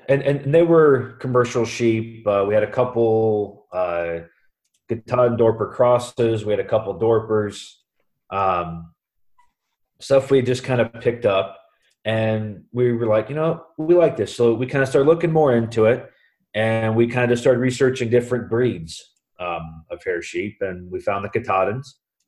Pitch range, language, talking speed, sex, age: 95-120 Hz, English, 170 wpm, male, 30-49